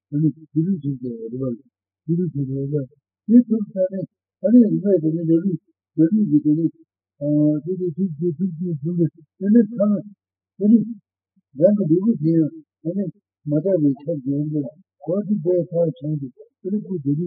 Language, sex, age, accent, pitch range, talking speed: Italian, male, 50-69, Indian, 145-185 Hz, 60 wpm